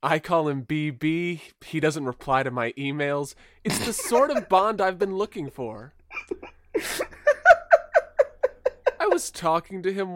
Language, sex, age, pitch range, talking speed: English, male, 20-39, 135-190 Hz, 140 wpm